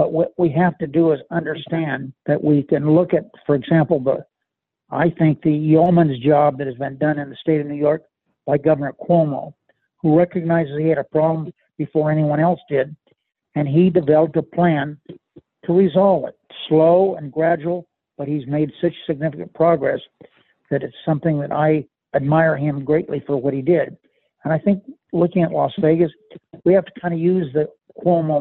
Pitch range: 150-170 Hz